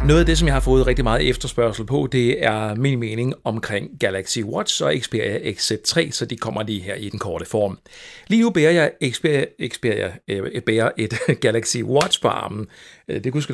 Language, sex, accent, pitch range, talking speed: Danish, male, native, 110-155 Hz, 210 wpm